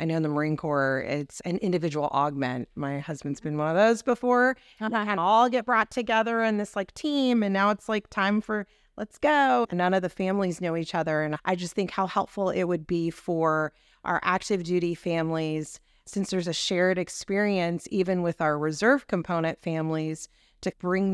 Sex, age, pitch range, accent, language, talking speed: female, 30-49, 155-195 Hz, American, English, 200 wpm